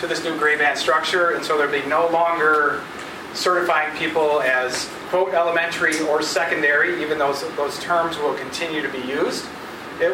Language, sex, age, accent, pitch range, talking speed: English, male, 40-59, American, 145-175 Hz, 180 wpm